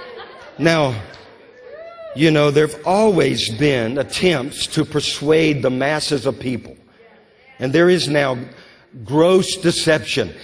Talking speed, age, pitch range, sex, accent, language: 110 wpm, 50-69, 135-195 Hz, male, American, English